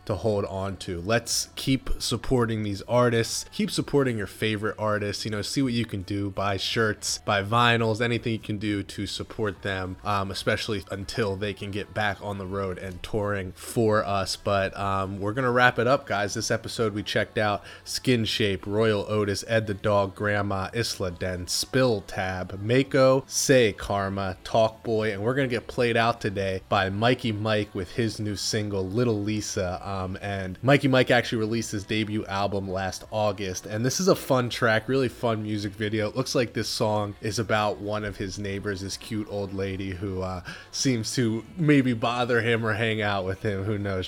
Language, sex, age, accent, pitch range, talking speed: English, male, 20-39, American, 95-115 Hz, 190 wpm